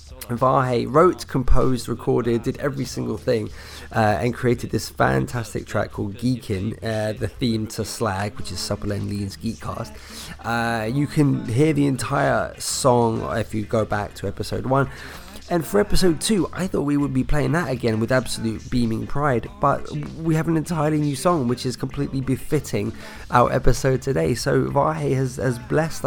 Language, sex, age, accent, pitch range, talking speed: English, male, 20-39, British, 105-130 Hz, 175 wpm